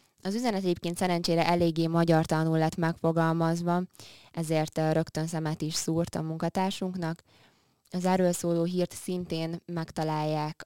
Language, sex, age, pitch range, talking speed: Hungarian, female, 20-39, 155-175 Hz, 125 wpm